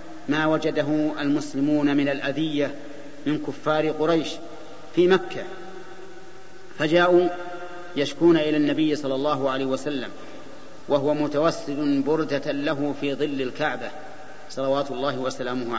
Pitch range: 145-175 Hz